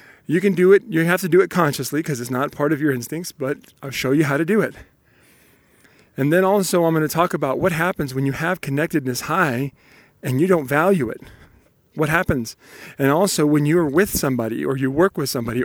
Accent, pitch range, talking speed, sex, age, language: American, 130-165 Hz, 220 wpm, male, 40-59, English